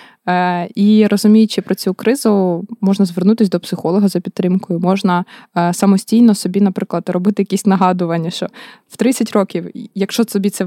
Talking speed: 140 wpm